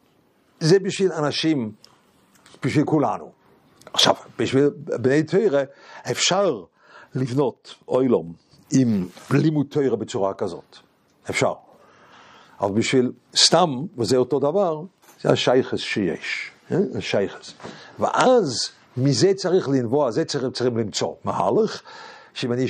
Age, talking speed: 60-79, 110 wpm